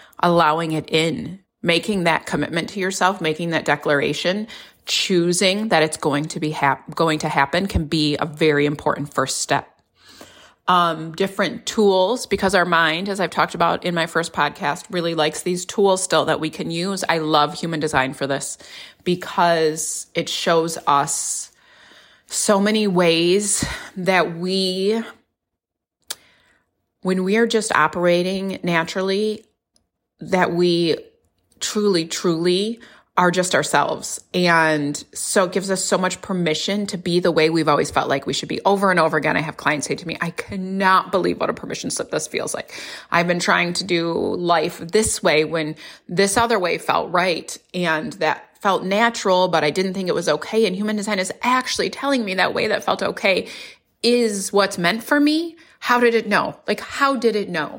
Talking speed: 175 wpm